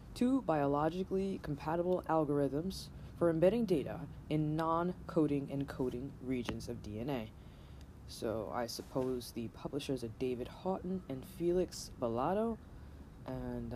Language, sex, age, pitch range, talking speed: English, female, 20-39, 120-170 Hz, 115 wpm